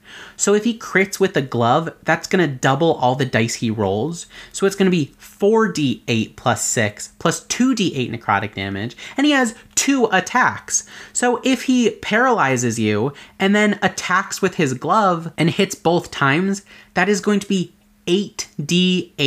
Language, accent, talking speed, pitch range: English, American, 160 wpm, 130-205 Hz